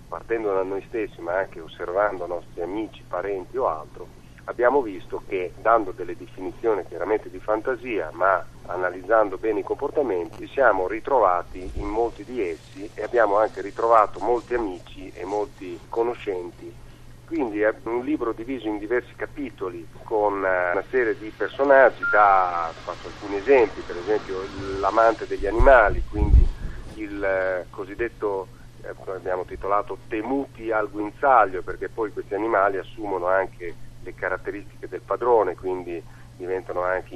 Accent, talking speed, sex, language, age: native, 135 wpm, male, Italian, 40-59